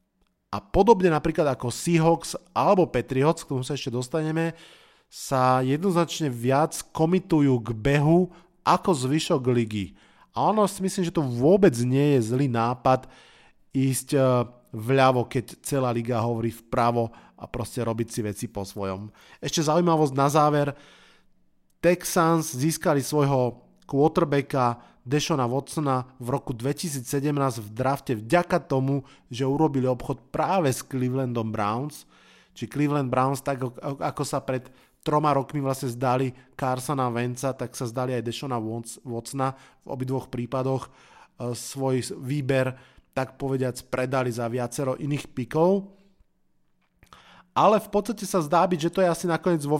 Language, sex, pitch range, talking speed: Slovak, male, 125-160 Hz, 135 wpm